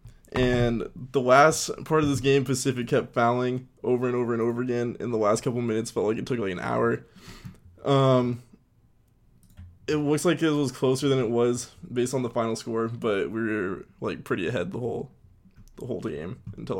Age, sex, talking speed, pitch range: 20-39, male, 195 wpm, 120-135 Hz